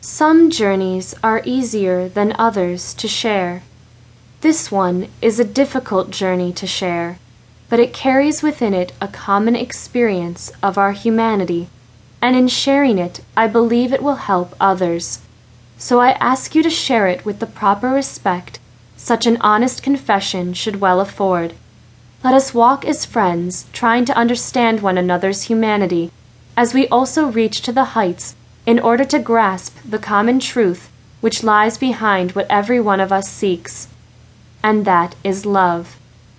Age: 10-29